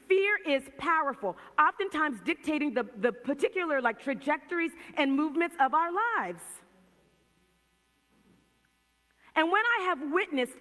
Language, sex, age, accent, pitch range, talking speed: English, female, 40-59, American, 255-345 Hz, 115 wpm